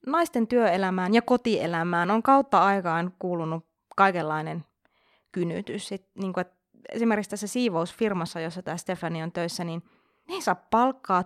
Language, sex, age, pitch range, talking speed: Finnish, female, 20-39, 175-235 Hz, 140 wpm